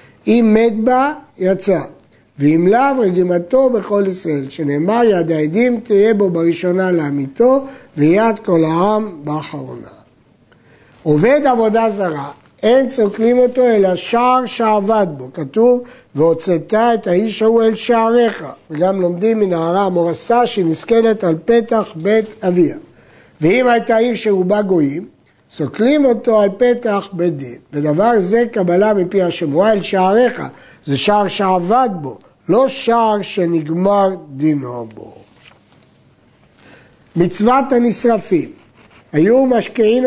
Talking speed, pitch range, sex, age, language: 115 wpm, 175-230 Hz, male, 60-79, Hebrew